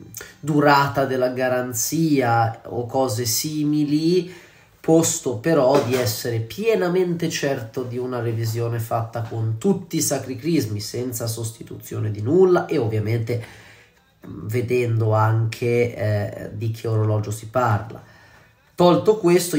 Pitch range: 115-150 Hz